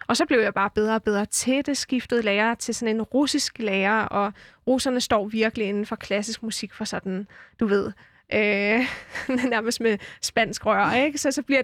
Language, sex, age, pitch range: Danish, female, 20-39, 225-265 Hz